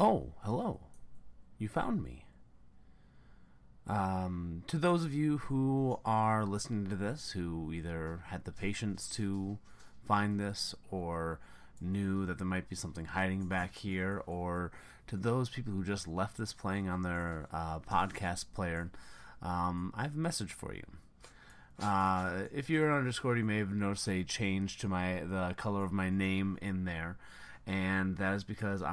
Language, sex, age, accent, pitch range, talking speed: English, male, 30-49, American, 90-105 Hz, 160 wpm